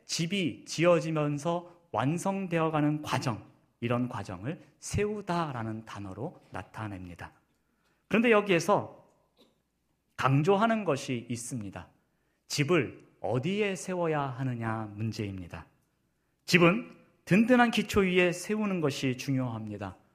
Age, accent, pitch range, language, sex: 40-59, native, 115-185 Hz, Korean, male